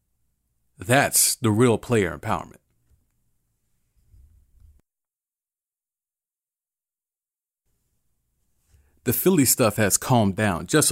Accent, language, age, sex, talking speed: American, English, 30-49, male, 65 wpm